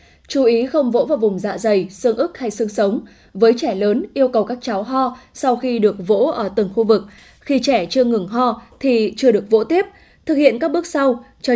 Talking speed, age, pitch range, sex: 235 wpm, 10-29, 210-255 Hz, female